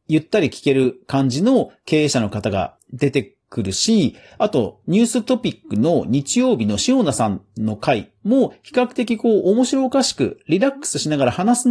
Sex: male